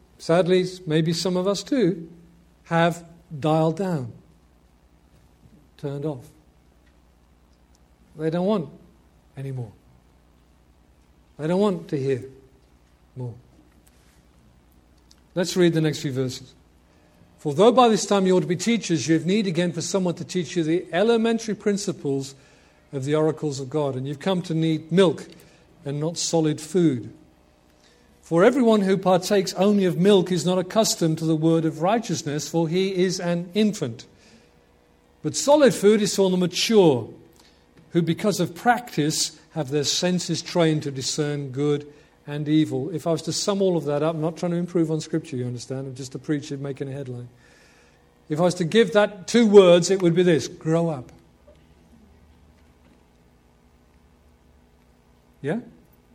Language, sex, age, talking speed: English, male, 50-69, 155 wpm